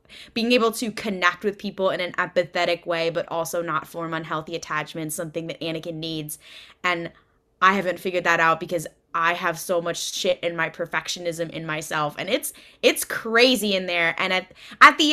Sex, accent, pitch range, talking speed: female, American, 170-205 Hz, 185 wpm